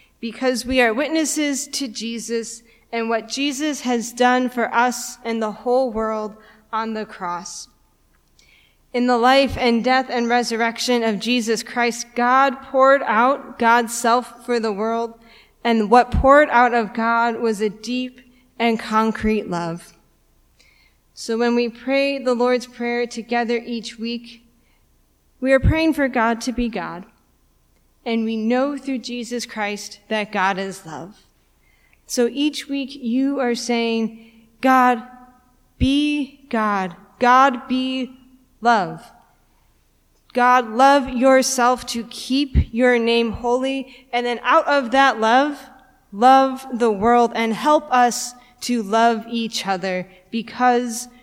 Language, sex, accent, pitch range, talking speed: English, female, American, 225-255 Hz, 135 wpm